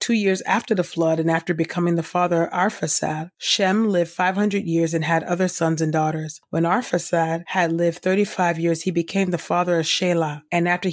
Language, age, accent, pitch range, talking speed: English, 30-49, American, 160-185 Hz, 210 wpm